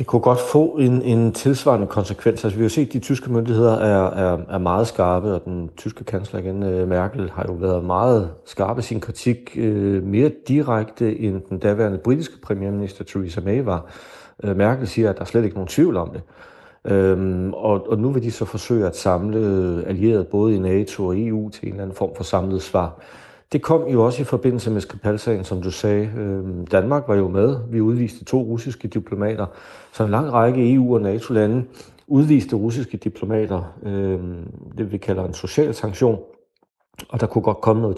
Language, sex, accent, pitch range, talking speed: Danish, male, native, 95-120 Hz, 200 wpm